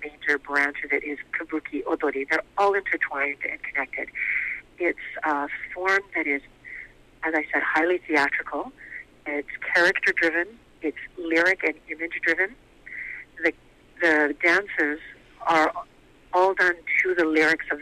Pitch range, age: 150-170 Hz, 50-69